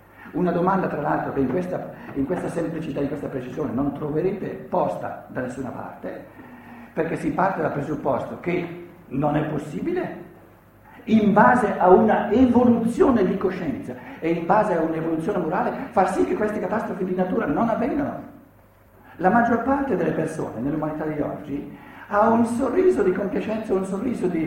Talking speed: 160 wpm